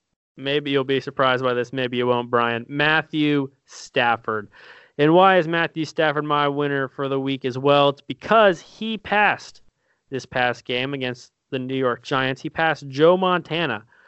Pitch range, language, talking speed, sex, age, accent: 125-150 Hz, English, 170 wpm, male, 20-39, American